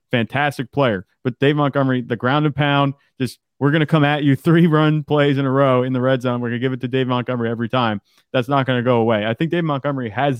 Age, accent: 30-49, American